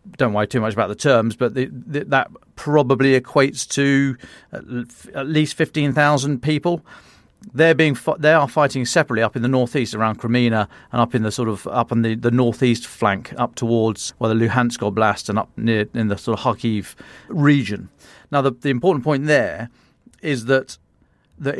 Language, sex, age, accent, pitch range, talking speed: English, male, 40-59, British, 115-140 Hz, 195 wpm